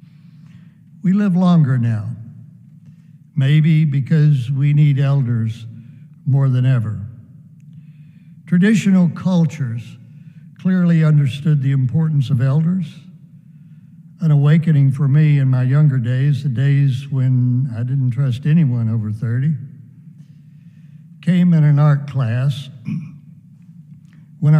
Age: 60-79